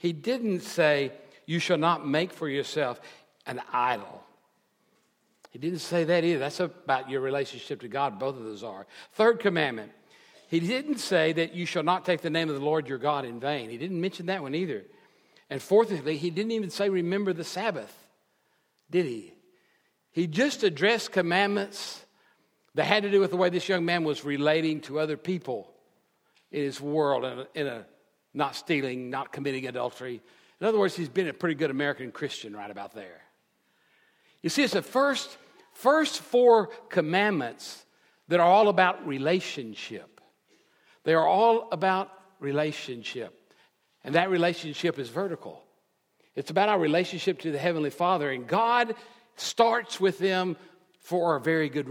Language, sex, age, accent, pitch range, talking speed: English, male, 60-79, American, 145-195 Hz, 170 wpm